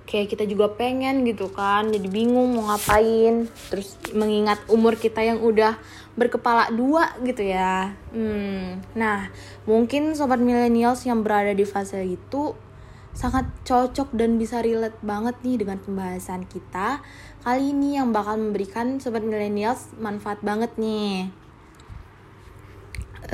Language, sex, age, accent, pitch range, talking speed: Indonesian, female, 20-39, native, 195-240 Hz, 130 wpm